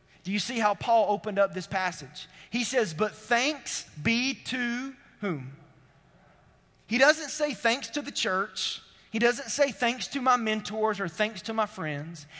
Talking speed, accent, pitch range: 170 wpm, American, 155-230 Hz